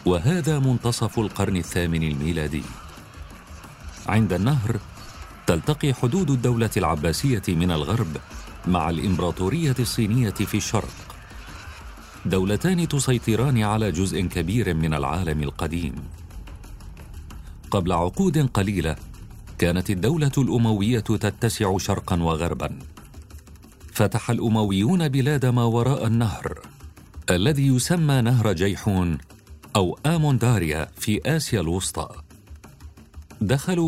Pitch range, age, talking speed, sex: 85-120 Hz, 40-59, 90 wpm, male